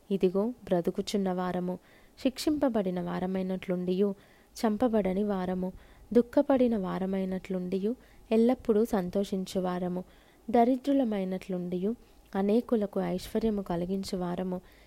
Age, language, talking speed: 20-39, Telugu, 60 wpm